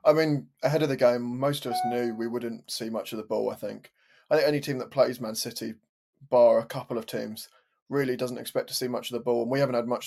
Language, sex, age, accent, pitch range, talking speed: English, male, 20-39, British, 120-140 Hz, 275 wpm